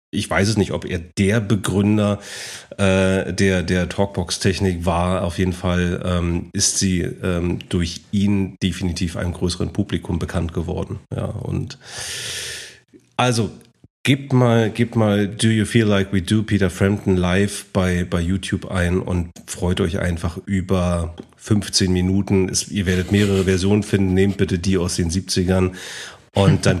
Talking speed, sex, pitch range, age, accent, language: 145 wpm, male, 90-105 Hz, 30-49, German, German